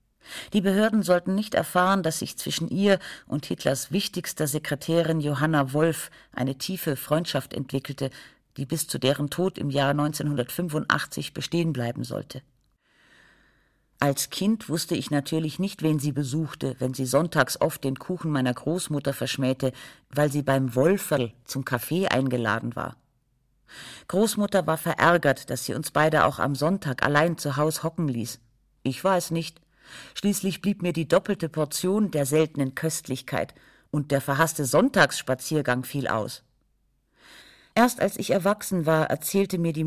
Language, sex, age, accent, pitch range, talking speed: German, female, 50-69, German, 135-175 Hz, 145 wpm